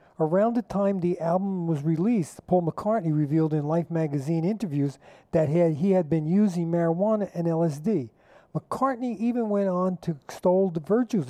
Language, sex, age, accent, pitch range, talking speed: English, male, 50-69, American, 160-205 Hz, 160 wpm